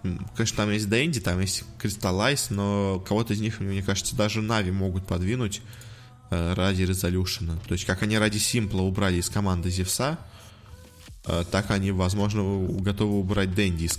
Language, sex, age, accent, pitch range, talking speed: Russian, male, 20-39, native, 95-110 Hz, 155 wpm